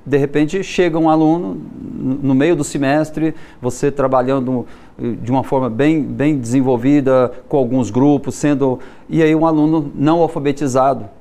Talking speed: 145 wpm